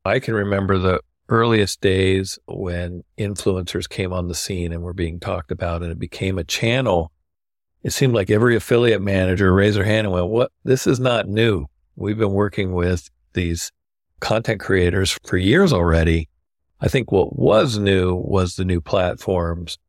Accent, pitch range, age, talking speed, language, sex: American, 85-100 Hz, 50-69, 170 wpm, English, male